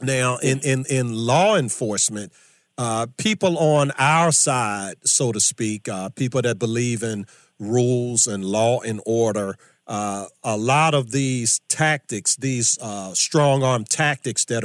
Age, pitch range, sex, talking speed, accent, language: 40-59, 115-145 Hz, male, 140 wpm, American, English